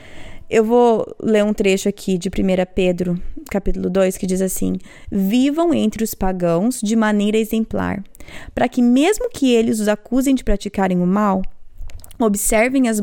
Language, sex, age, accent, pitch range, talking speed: Portuguese, female, 20-39, Brazilian, 190-240 Hz, 155 wpm